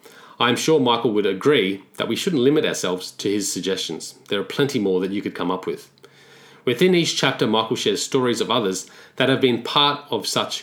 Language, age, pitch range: English, 30-49, 100-130 Hz